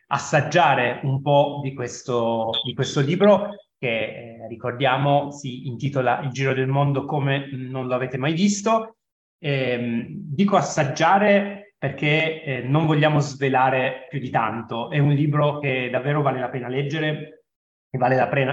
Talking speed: 150 wpm